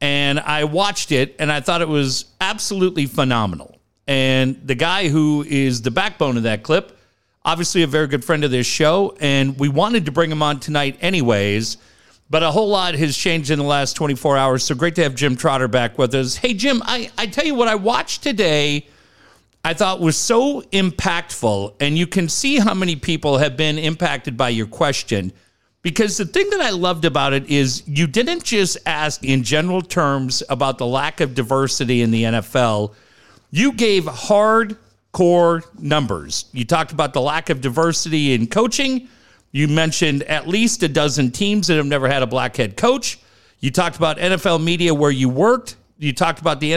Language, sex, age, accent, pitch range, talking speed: English, male, 50-69, American, 135-180 Hz, 190 wpm